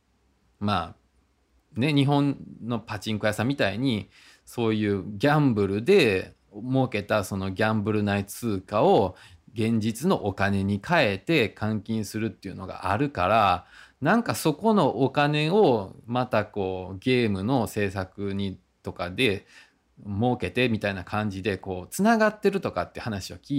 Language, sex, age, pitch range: Japanese, male, 20-39, 95-145 Hz